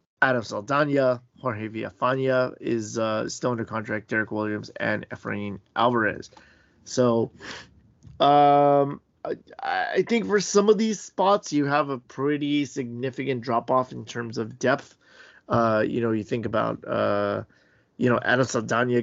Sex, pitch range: male, 115-140 Hz